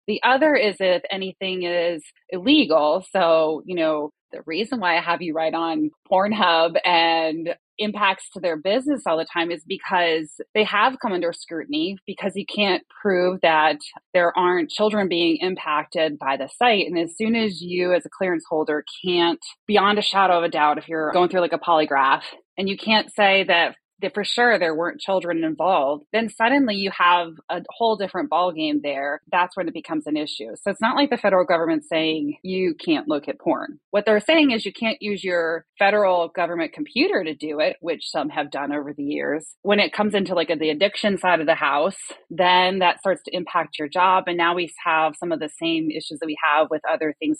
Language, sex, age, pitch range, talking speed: English, female, 20-39, 160-200 Hz, 210 wpm